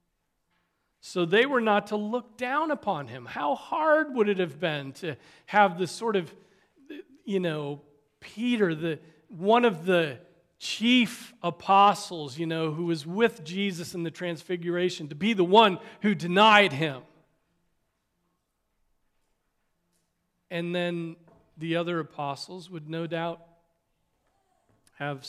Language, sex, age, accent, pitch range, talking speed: English, male, 40-59, American, 145-195 Hz, 130 wpm